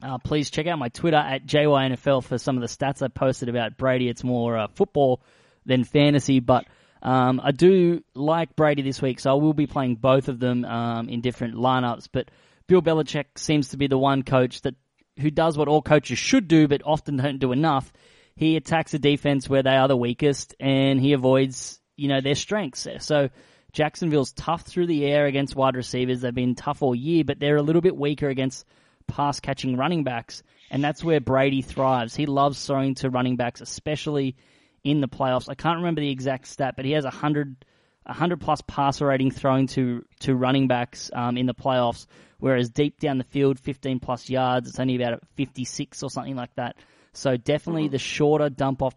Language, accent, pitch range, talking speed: English, Australian, 125-145 Hz, 200 wpm